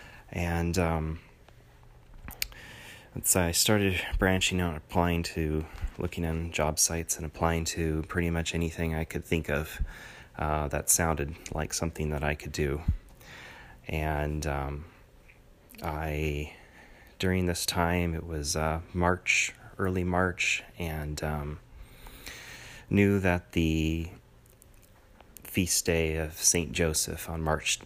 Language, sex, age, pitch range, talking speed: English, male, 30-49, 80-90 Hz, 120 wpm